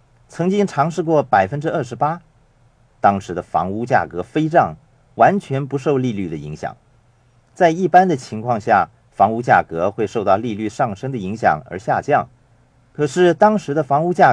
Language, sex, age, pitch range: Chinese, male, 50-69, 110-155 Hz